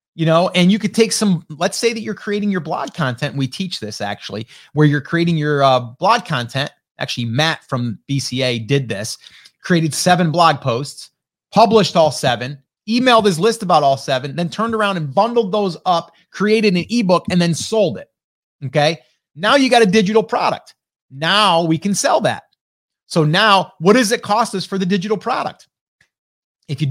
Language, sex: English, male